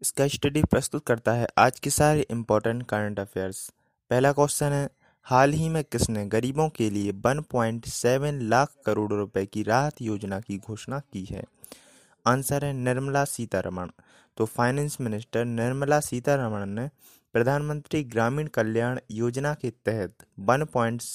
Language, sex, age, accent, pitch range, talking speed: Hindi, male, 20-39, native, 110-140 Hz, 135 wpm